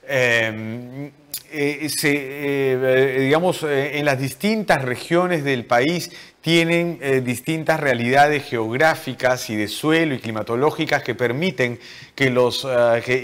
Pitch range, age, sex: 120-160 Hz, 30-49, male